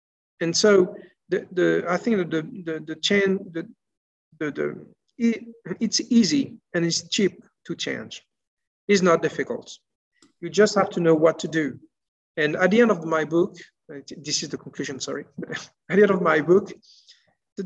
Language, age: English, 50-69